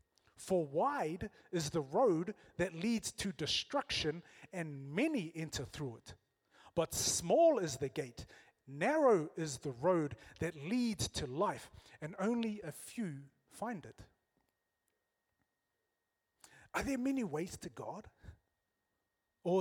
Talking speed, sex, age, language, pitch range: 120 wpm, male, 30-49, English, 140-205 Hz